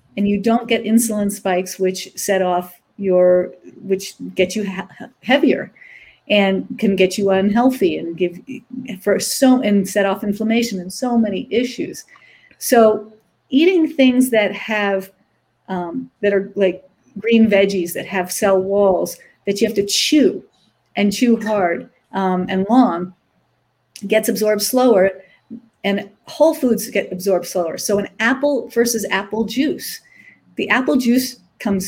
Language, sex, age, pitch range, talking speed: English, female, 50-69, 190-240 Hz, 145 wpm